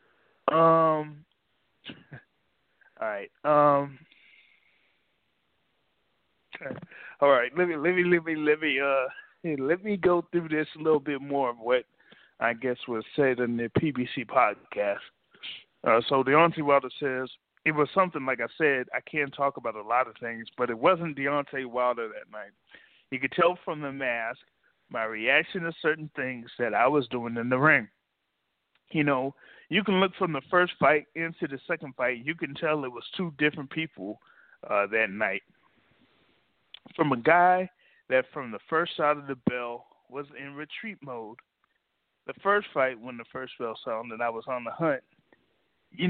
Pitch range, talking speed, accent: 130-160 Hz, 170 wpm, American